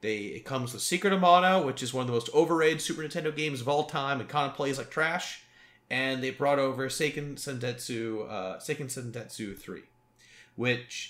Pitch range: 125-165 Hz